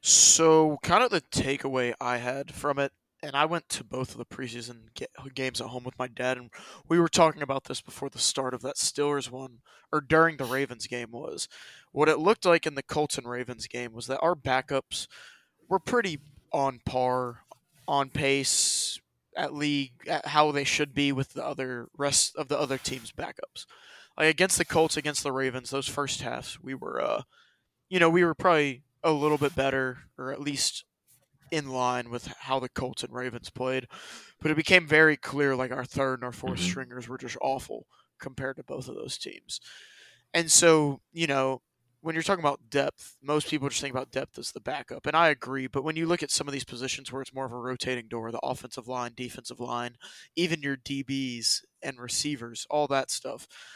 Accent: American